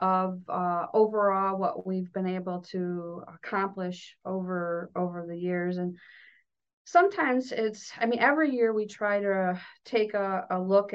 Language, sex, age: English, female, 40-59